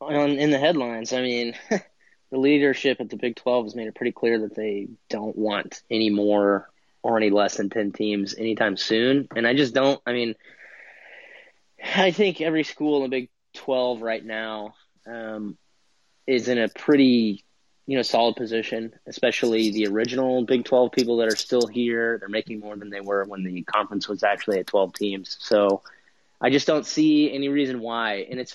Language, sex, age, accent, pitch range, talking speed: English, male, 30-49, American, 105-125 Hz, 190 wpm